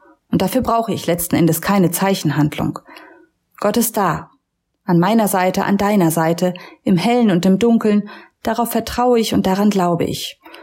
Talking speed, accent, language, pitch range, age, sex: 165 wpm, German, German, 185-240 Hz, 30-49, female